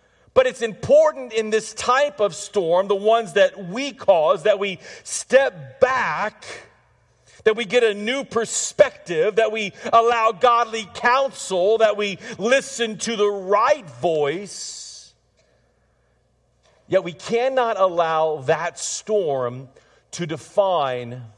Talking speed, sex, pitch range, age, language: 120 wpm, male, 160-225 Hz, 40-59, English